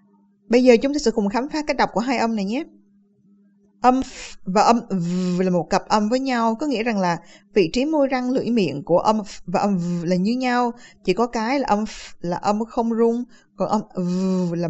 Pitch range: 185-230 Hz